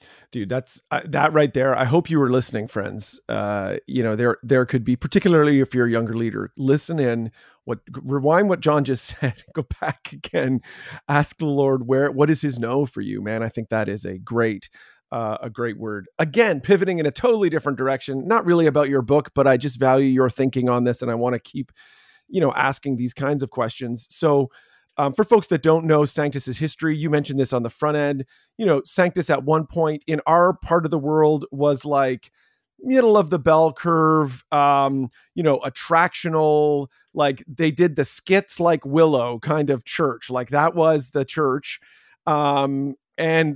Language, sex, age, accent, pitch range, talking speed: English, male, 40-59, American, 130-160 Hz, 200 wpm